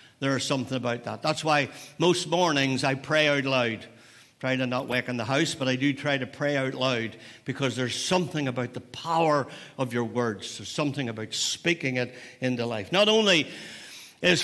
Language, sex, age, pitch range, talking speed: English, male, 60-79, 130-170 Hz, 200 wpm